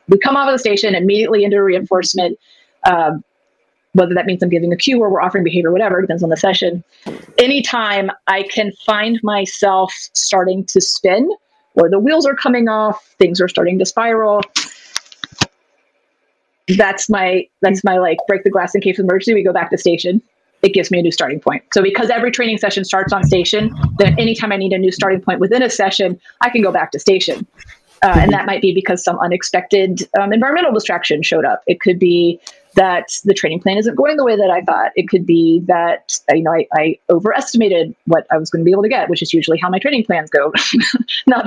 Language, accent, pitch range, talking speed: English, American, 180-220 Hz, 215 wpm